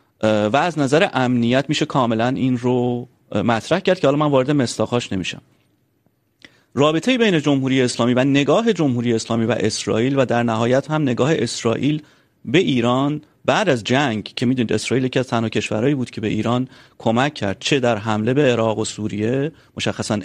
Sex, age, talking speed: male, 40-59, 170 wpm